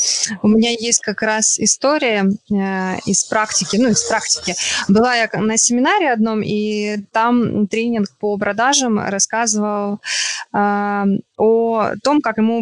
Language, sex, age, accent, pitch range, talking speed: Ukrainian, female, 20-39, native, 210-270 Hz, 135 wpm